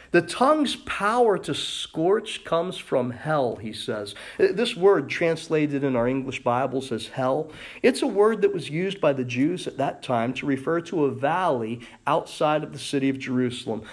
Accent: American